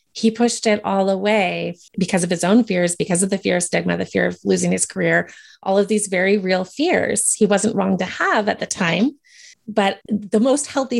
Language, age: English, 30-49